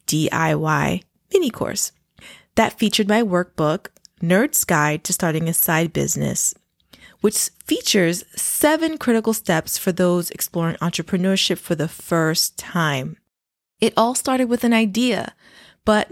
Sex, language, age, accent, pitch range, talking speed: female, English, 20-39, American, 170-220 Hz, 125 wpm